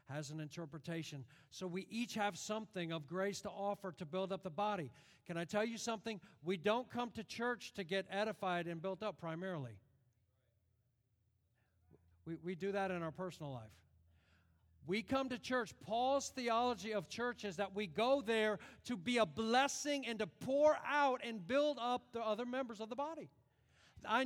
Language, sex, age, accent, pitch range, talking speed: English, male, 50-69, American, 145-225 Hz, 180 wpm